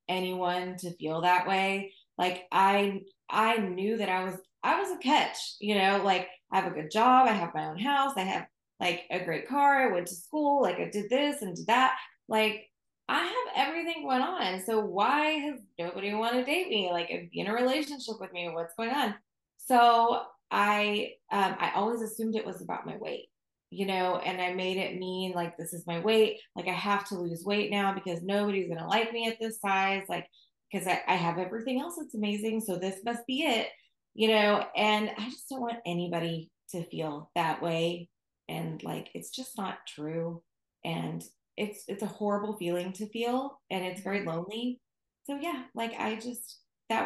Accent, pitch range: American, 180-230 Hz